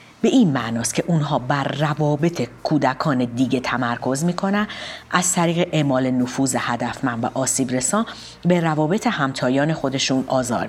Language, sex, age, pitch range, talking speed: Persian, female, 40-59, 130-180 Hz, 140 wpm